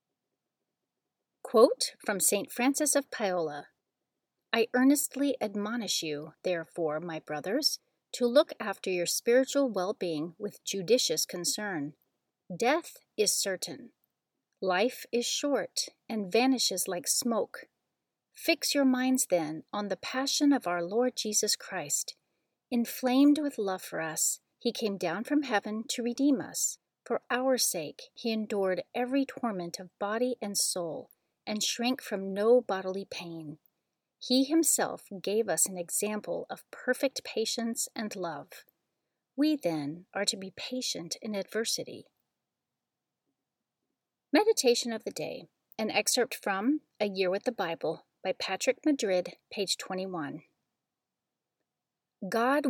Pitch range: 185-255 Hz